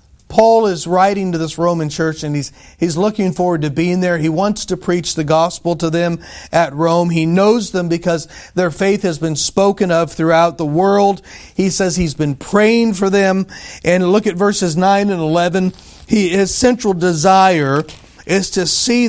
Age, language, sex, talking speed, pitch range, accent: 40-59, English, male, 185 wpm, 160-200 Hz, American